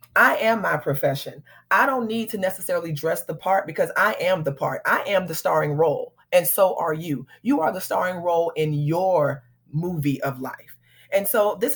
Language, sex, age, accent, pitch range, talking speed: English, female, 30-49, American, 155-205 Hz, 200 wpm